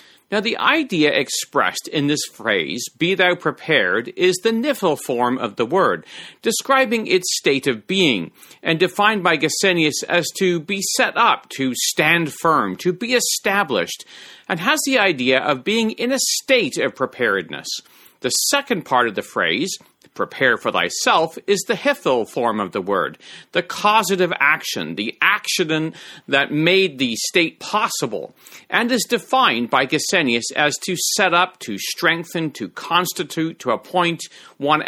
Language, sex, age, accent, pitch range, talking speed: English, male, 40-59, American, 150-215 Hz, 155 wpm